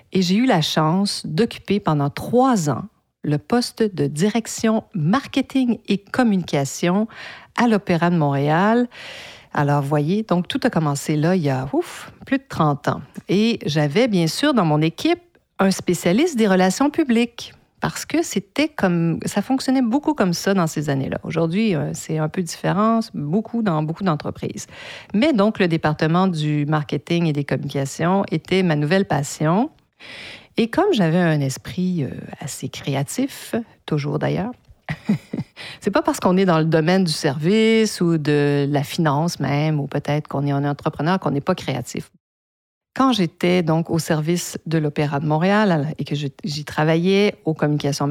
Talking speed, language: 165 wpm, French